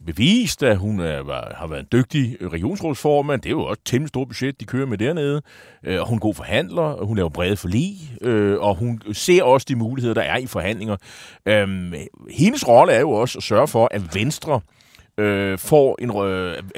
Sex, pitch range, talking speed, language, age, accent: male, 100-135 Hz, 205 wpm, Danish, 30-49, native